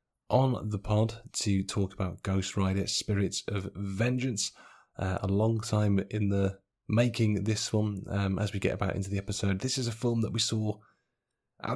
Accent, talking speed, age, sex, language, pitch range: British, 185 wpm, 30-49, male, English, 95-110 Hz